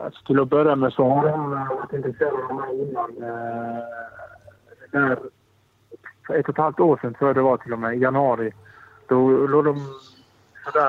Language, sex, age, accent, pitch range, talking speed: Swedish, male, 30-49, Norwegian, 125-140 Hz, 180 wpm